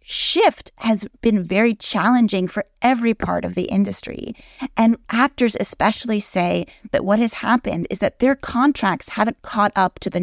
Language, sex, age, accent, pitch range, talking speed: English, female, 30-49, American, 200-255 Hz, 165 wpm